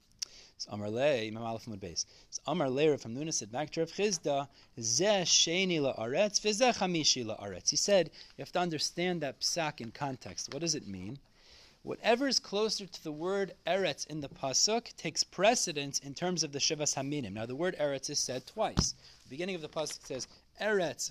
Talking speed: 190 wpm